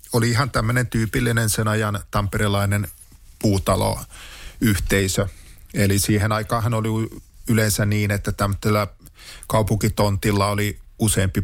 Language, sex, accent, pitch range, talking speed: Finnish, male, native, 100-110 Hz, 100 wpm